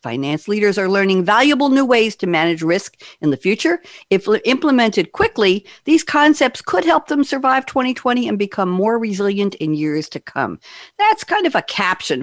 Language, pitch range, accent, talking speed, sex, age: English, 155-250 Hz, American, 175 wpm, female, 60-79